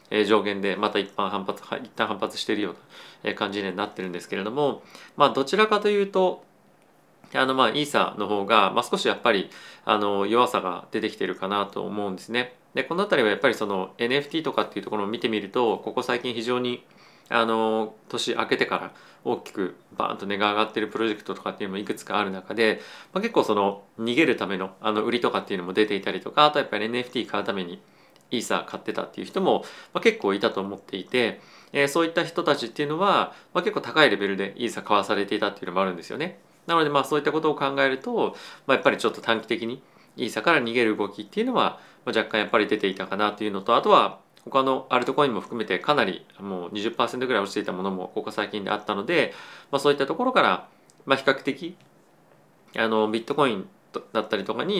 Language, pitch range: Japanese, 100-140 Hz